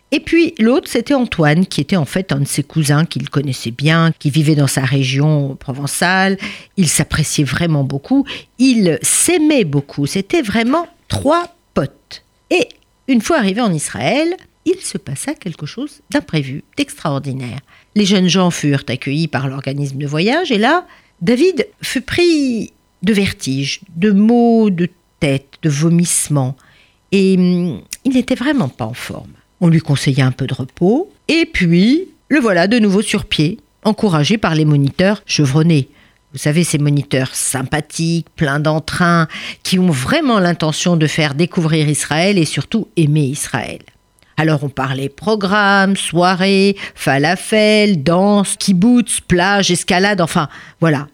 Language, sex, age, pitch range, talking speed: French, female, 50-69, 145-215 Hz, 150 wpm